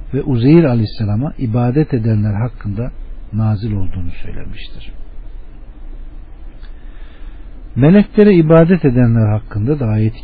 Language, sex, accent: Turkish, male, native